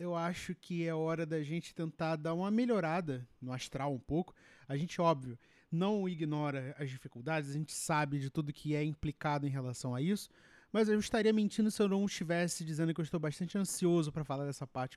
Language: Portuguese